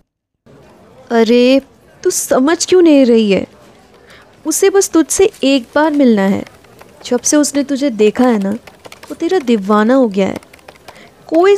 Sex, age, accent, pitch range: female, 20-39, native, 225-280 Hz